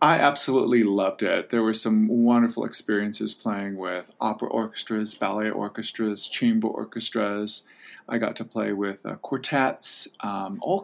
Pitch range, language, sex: 105-130 Hz, English, male